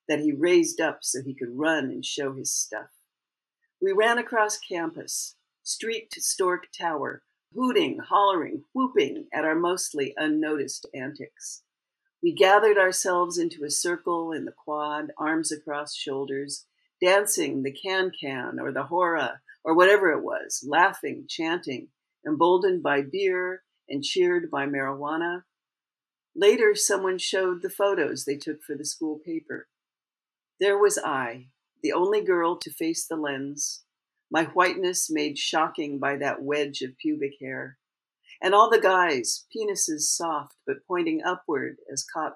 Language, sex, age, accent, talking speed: English, female, 60-79, American, 145 wpm